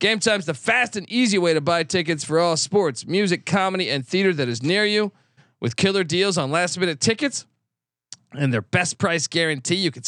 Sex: male